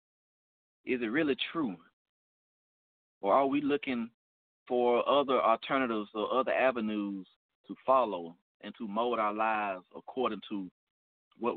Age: 30-49